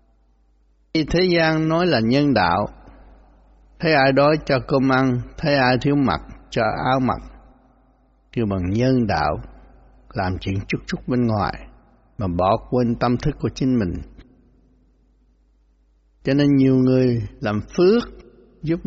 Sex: male